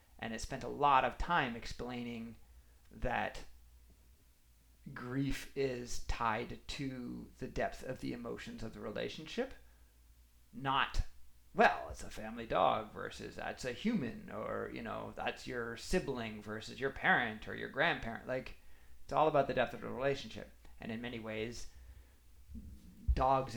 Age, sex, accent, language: 40-59, male, American, English